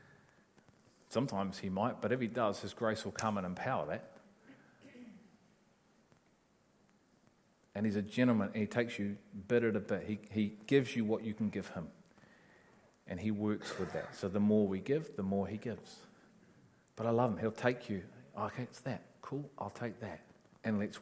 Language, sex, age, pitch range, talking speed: English, male, 40-59, 100-120 Hz, 185 wpm